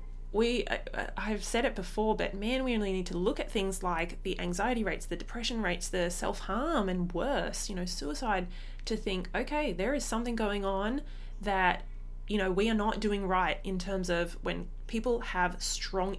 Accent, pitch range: Australian, 180-235 Hz